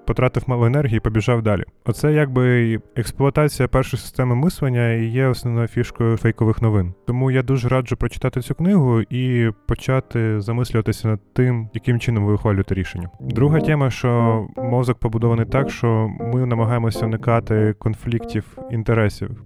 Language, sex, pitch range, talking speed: Ukrainian, male, 110-130 Hz, 140 wpm